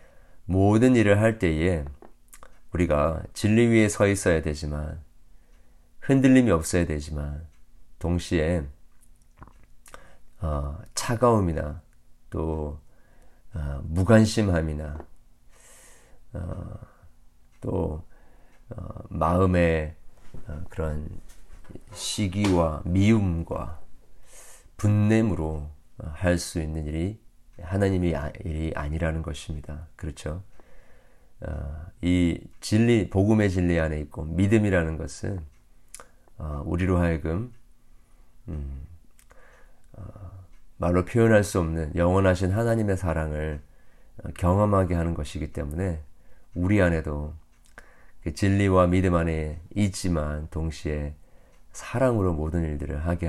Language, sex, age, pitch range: Korean, male, 40-59, 75-95 Hz